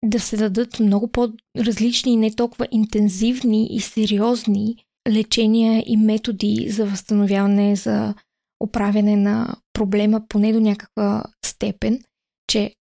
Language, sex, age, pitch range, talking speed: Bulgarian, female, 20-39, 210-235 Hz, 110 wpm